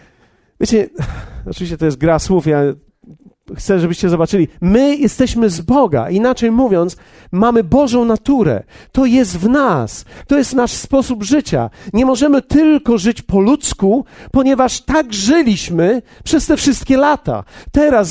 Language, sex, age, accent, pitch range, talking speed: Polish, male, 40-59, native, 190-260 Hz, 140 wpm